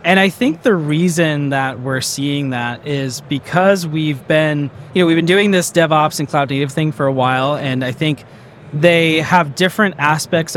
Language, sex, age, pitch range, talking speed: English, male, 20-39, 135-165 Hz, 195 wpm